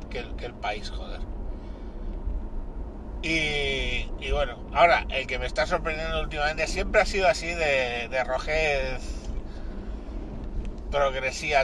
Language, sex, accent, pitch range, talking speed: Spanish, male, Spanish, 105-140 Hz, 125 wpm